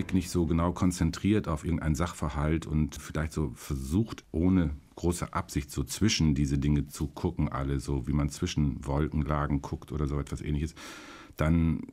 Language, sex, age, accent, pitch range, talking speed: German, male, 50-69, German, 75-85 Hz, 160 wpm